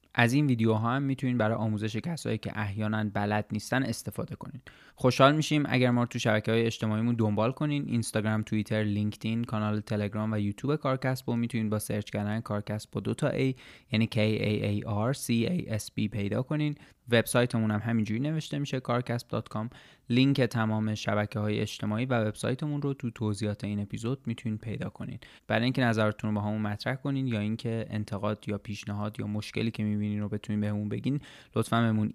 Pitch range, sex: 105-125 Hz, male